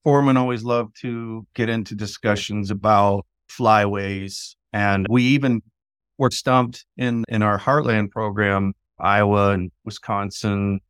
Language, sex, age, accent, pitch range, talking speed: English, male, 30-49, American, 100-120 Hz, 120 wpm